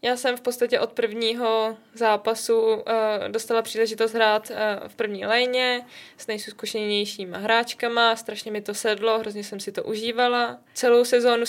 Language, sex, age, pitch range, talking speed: Czech, female, 20-39, 215-235 Hz, 140 wpm